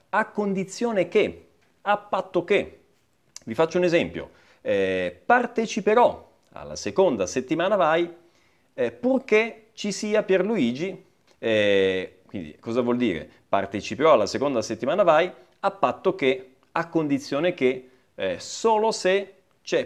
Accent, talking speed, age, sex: native, 125 wpm, 40-59, male